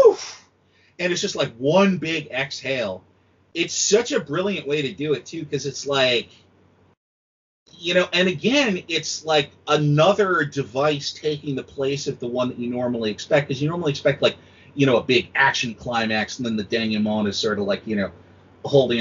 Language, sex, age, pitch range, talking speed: English, male, 30-49, 110-160 Hz, 190 wpm